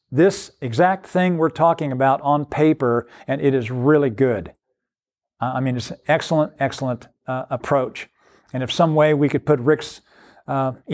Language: English